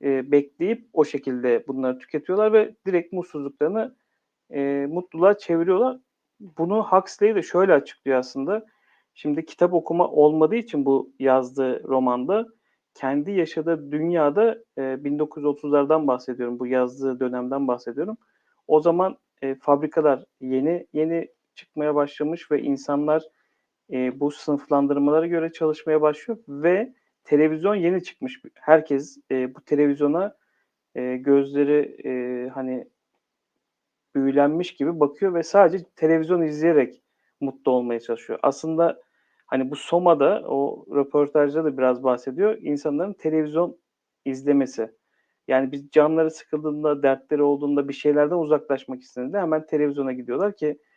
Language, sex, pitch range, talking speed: Turkish, male, 135-165 Hz, 115 wpm